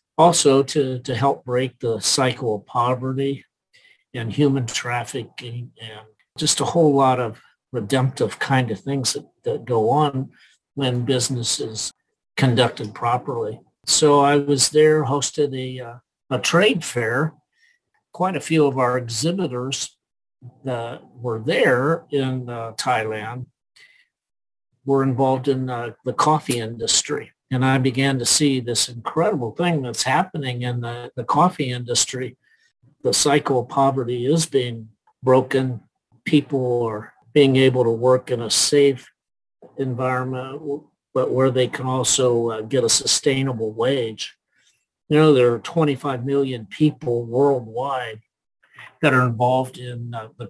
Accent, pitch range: American, 120-145 Hz